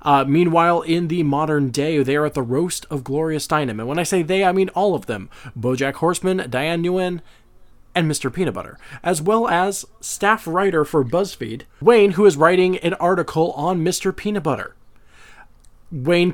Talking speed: 185 wpm